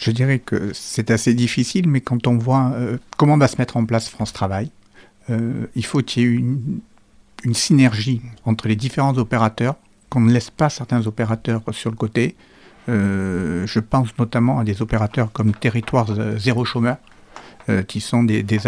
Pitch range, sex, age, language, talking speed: 110-130 Hz, male, 60-79, French, 185 wpm